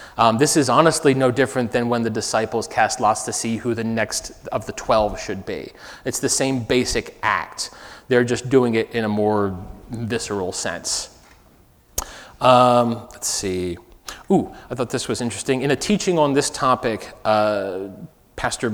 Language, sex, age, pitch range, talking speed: English, male, 30-49, 110-140 Hz, 170 wpm